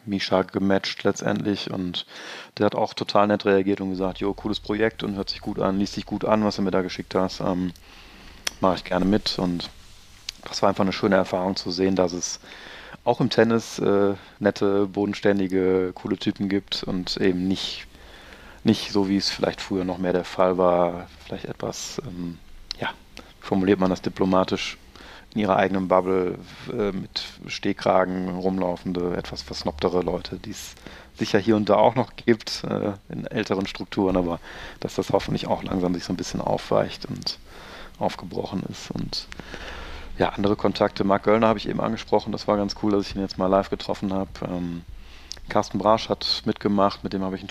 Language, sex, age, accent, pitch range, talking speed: German, male, 30-49, German, 90-105 Hz, 185 wpm